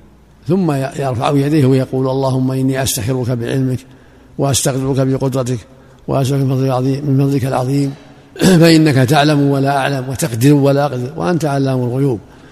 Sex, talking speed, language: male, 115 wpm, Arabic